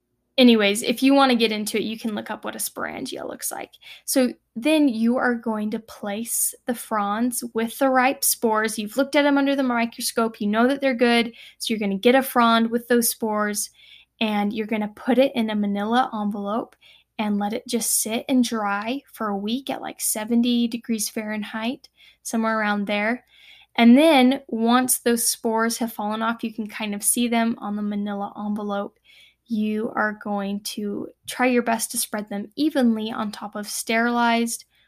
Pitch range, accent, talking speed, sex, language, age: 215-245 Hz, American, 195 wpm, female, English, 10-29